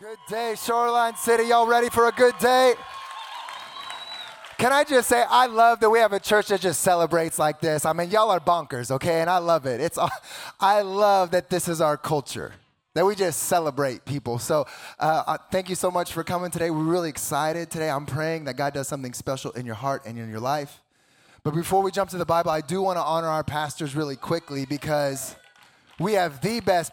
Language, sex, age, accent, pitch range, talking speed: English, male, 20-39, American, 135-180 Hz, 215 wpm